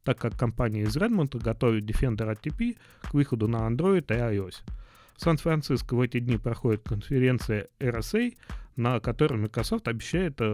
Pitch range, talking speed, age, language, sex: 110-135 Hz, 150 wpm, 30-49, Russian, male